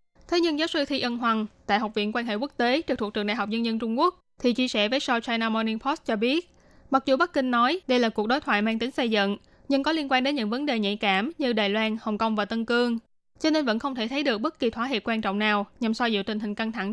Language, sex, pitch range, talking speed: Vietnamese, female, 220-260 Hz, 310 wpm